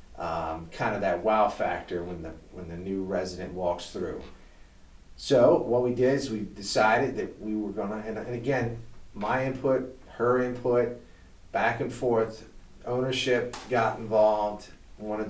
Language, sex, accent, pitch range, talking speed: English, male, American, 90-115 Hz, 155 wpm